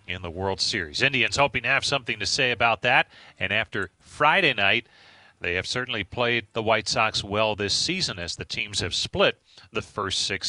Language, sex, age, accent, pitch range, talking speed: English, male, 40-59, American, 100-135 Hz, 200 wpm